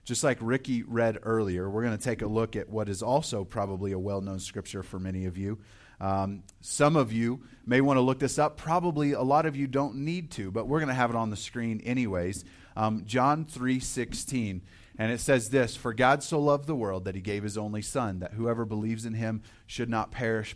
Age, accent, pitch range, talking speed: 30-49, American, 100-155 Hz, 230 wpm